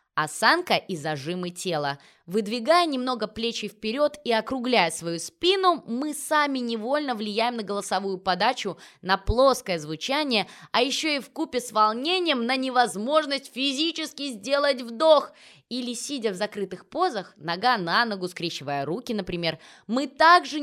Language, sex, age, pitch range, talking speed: Russian, female, 20-39, 190-275 Hz, 135 wpm